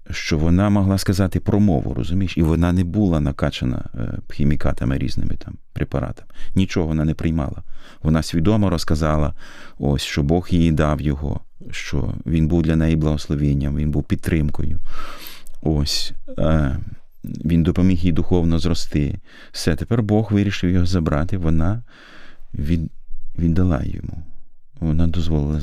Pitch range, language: 75-95 Hz, Ukrainian